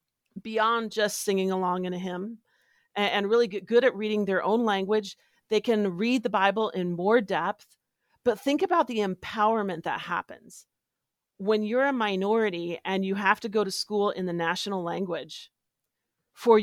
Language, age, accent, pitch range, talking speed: English, 40-59, American, 190-235 Hz, 170 wpm